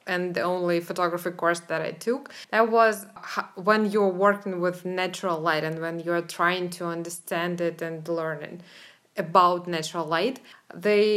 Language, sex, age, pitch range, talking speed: English, female, 20-39, 175-210 Hz, 155 wpm